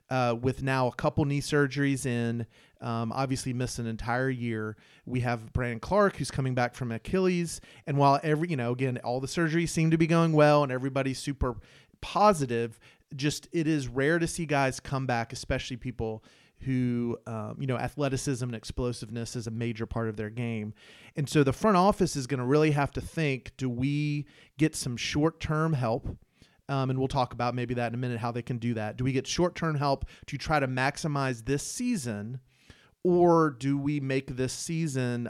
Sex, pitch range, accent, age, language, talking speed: male, 120-145 Hz, American, 40-59, English, 195 wpm